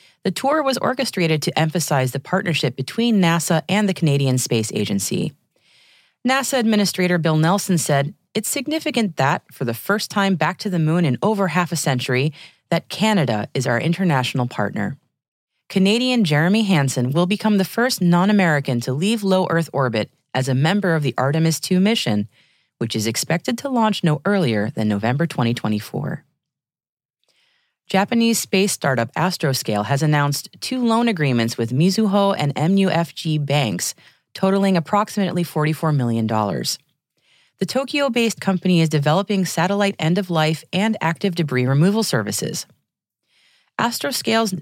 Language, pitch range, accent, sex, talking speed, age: English, 135-195 Hz, American, female, 140 wpm, 30-49